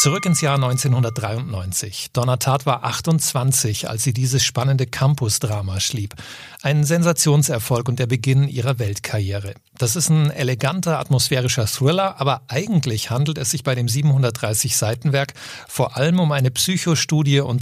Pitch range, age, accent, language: 120-145 Hz, 40-59, German, German